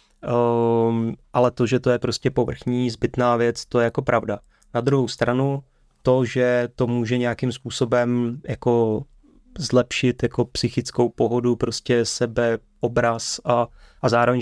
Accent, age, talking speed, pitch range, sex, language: native, 20-39, 140 wpm, 115-125 Hz, male, Czech